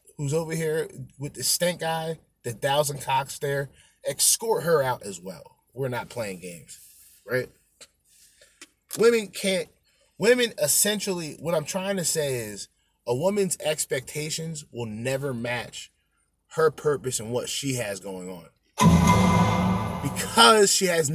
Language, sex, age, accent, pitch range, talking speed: English, male, 20-39, American, 135-200 Hz, 135 wpm